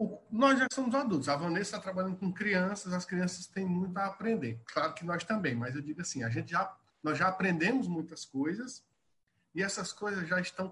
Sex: male